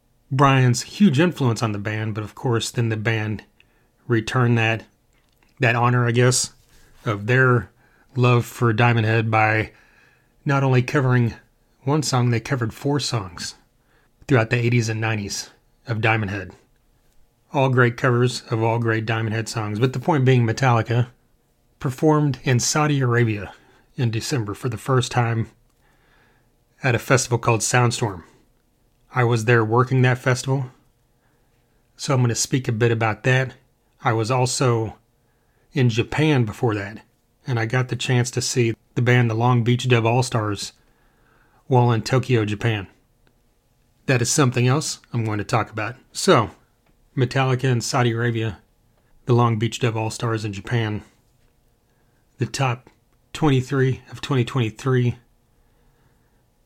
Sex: male